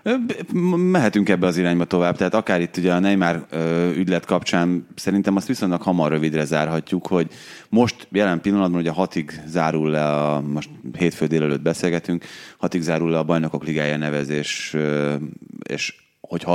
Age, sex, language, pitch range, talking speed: 30-49, male, Hungarian, 75-90 Hz, 145 wpm